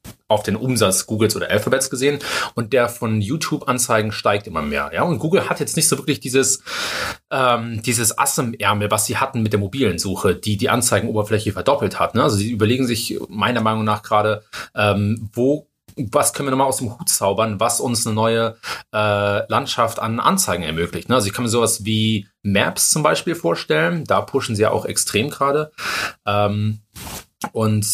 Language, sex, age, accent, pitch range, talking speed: German, male, 30-49, German, 105-130 Hz, 185 wpm